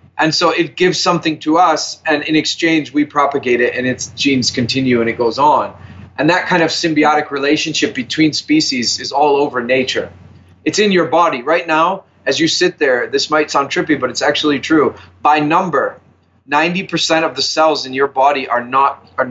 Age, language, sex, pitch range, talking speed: 30-49, English, male, 130-160 Hz, 195 wpm